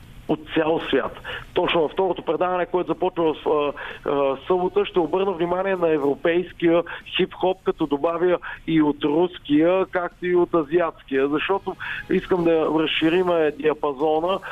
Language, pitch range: Bulgarian, 155-185 Hz